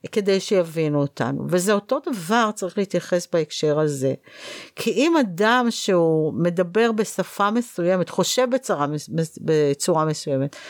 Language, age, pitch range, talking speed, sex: Hebrew, 50-69, 170-235 Hz, 125 wpm, female